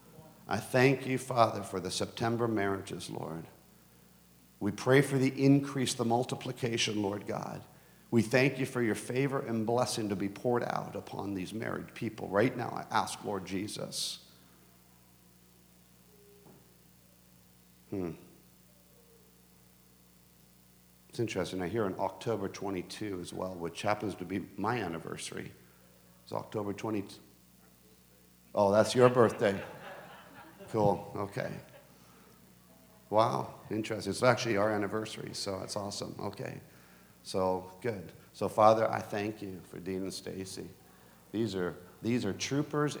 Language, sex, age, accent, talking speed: English, male, 50-69, American, 130 wpm